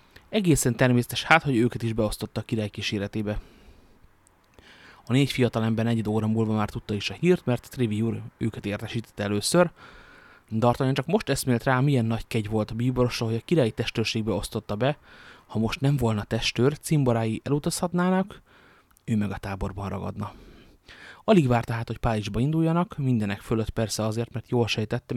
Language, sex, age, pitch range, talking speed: Hungarian, male, 30-49, 110-130 Hz, 165 wpm